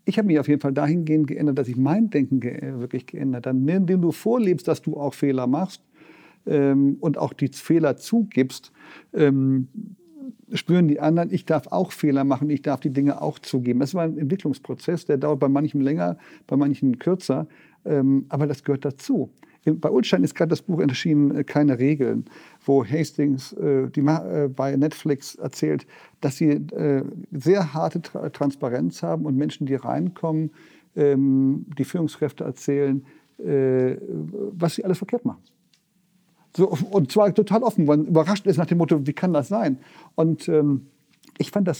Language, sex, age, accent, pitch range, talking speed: German, male, 50-69, German, 140-175 Hz, 175 wpm